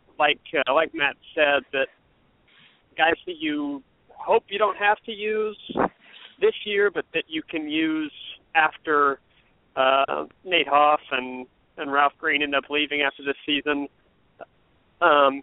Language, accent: English, American